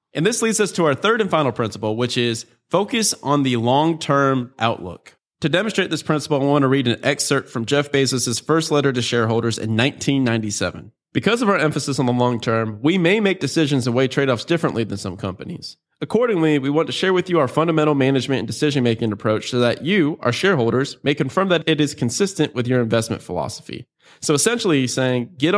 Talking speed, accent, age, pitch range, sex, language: 205 wpm, American, 30-49, 120-155 Hz, male, English